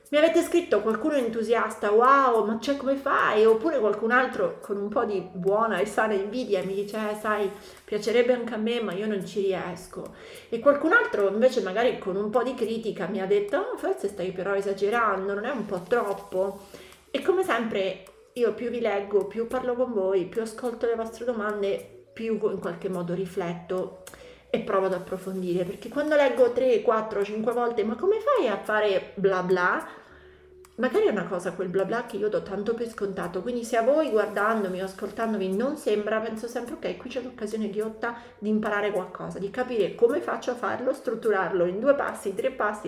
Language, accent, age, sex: Italian, native, 30-49, female